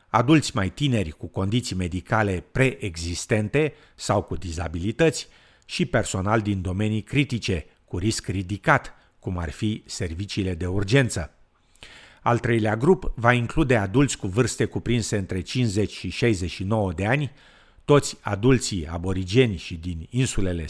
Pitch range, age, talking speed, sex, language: 95-125 Hz, 50-69, 130 wpm, male, Romanian